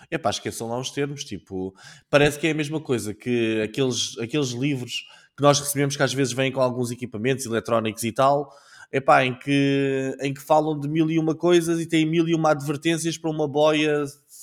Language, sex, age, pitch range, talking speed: Portuguese, male, 20-39, 125-155 Hz, 210 wpm